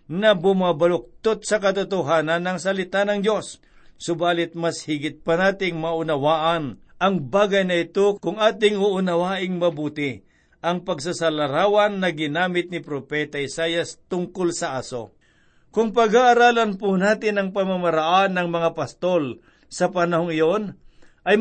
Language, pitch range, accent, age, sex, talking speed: Filipino, 160-195 Hz, native, 50-69, male, 125 wpm